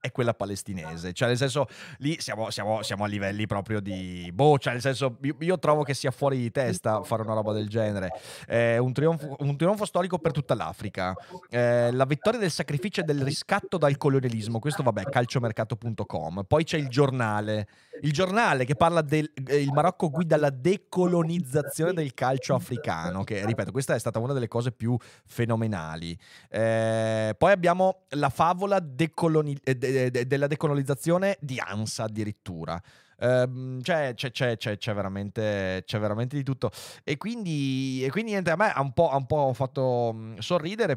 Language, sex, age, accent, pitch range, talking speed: Italian, male, 30-49, native, 115-150 Hz, 175 wpm